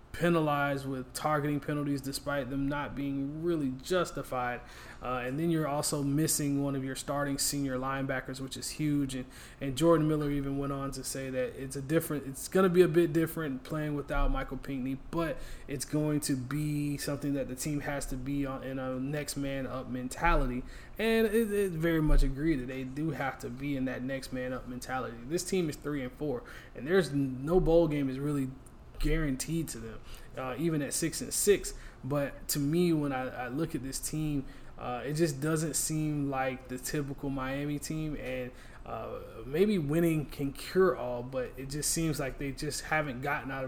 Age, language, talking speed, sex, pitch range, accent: 20-39, English, 200 wpm, male, 130-150 Hz, American